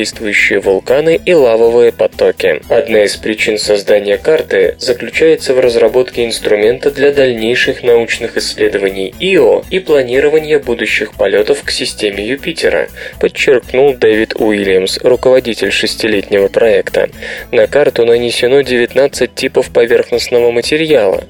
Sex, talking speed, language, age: male, 105 wpm, Russian, 20-39